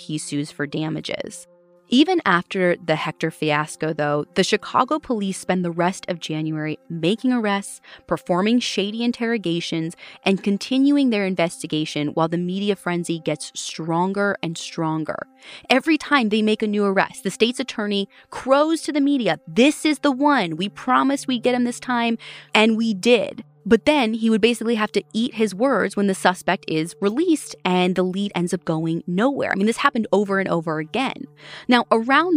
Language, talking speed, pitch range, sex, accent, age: English, 175 wpm, 165-240 Hz, female, American, 20-39